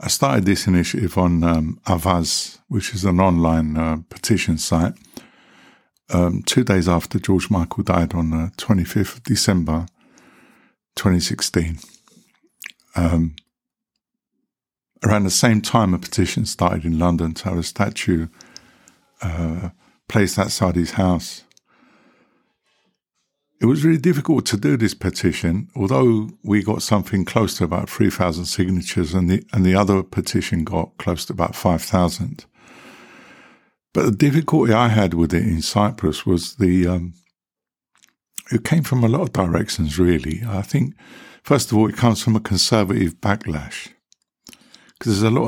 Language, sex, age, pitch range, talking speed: English, male, 50-69, 85-110 Hz, 145 wpm